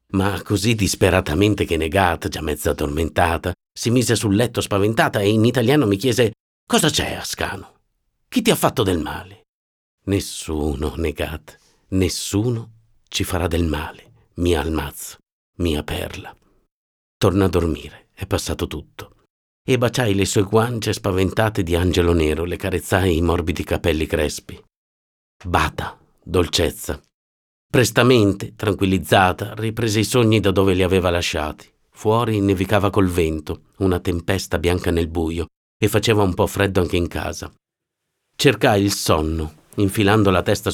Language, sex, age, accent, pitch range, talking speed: Italian, male, 50-69, native, 85-110 Hz, 140 wpm